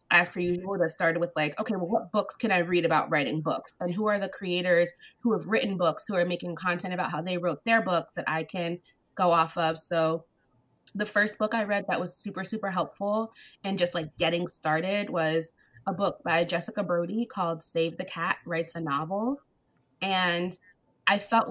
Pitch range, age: 165-205 Hz, 20-39